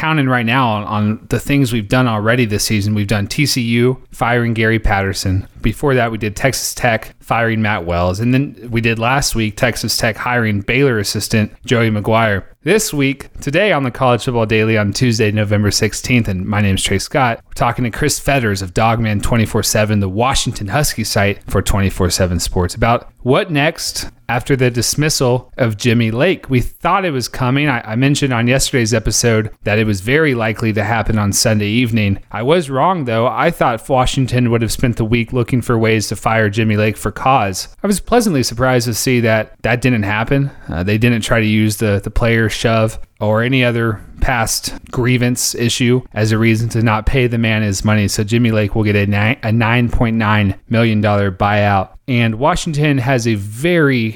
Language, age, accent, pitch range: English, 30-49, American, 105-125 Hz